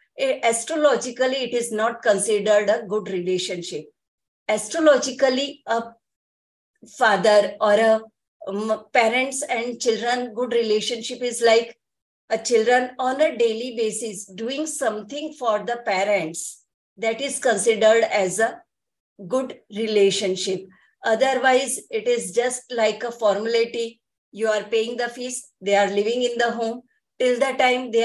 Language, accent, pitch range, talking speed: English, Indian, 220-255 Hz, 130 wpm